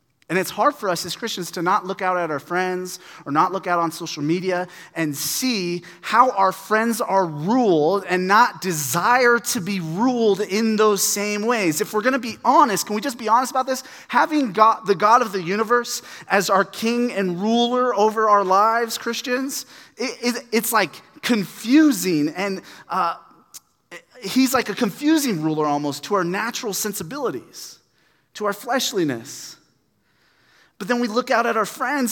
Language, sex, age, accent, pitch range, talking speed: English, male, 30-49, American, 170-235 Hz, 180 wpm